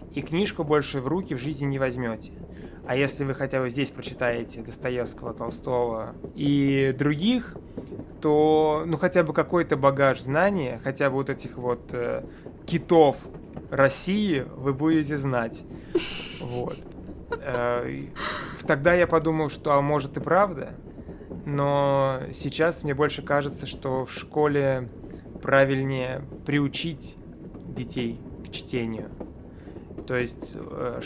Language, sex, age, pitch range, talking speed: Russian, male, 20-39, 125-150 Hz, 120 wpm